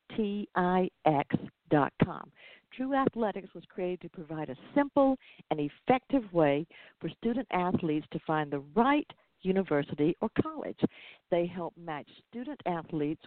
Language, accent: English, American